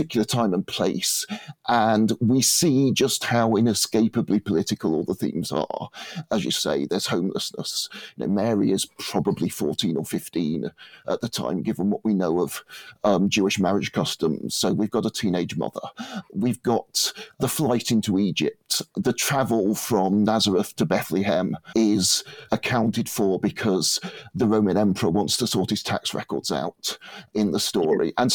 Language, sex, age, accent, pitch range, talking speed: English, male, 40-59, British, 115-165 Hz, 160 wpm